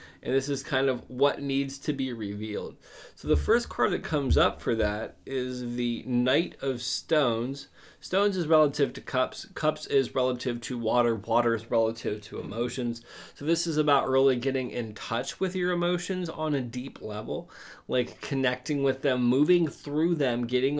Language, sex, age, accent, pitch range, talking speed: English, male, 20-39, American, 120-155 Hz, 180 wpm